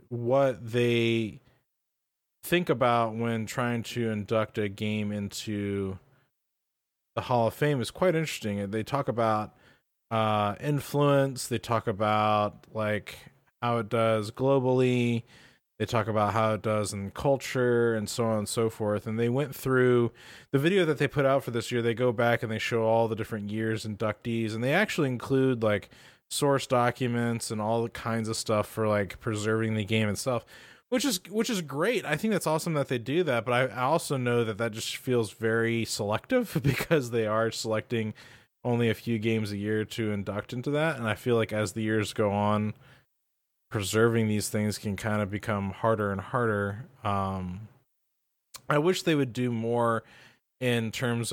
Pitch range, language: 105-125 Hz, English